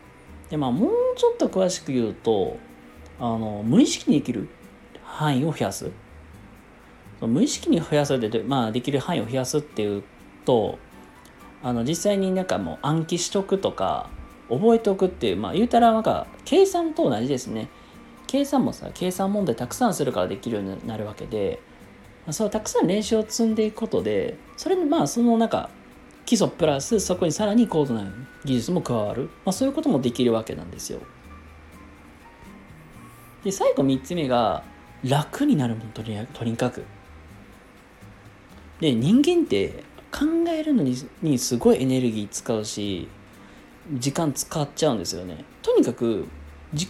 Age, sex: 40-59, male